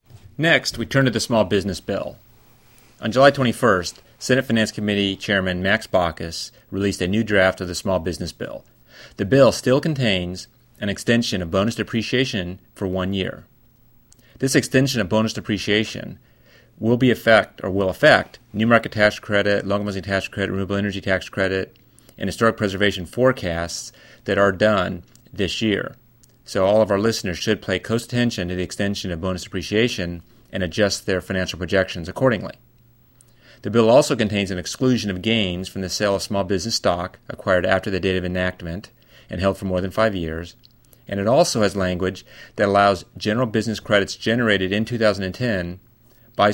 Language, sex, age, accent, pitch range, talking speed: English, male, 30-49, American, 95-120 Hz, 170 wpm